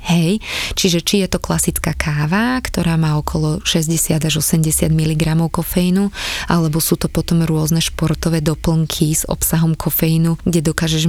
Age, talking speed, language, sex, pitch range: 20-39, 145 wpm, Slovak, female, 160-180 Hz